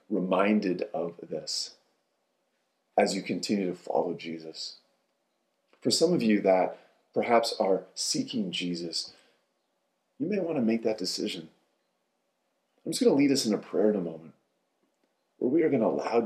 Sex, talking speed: male, 160 wpm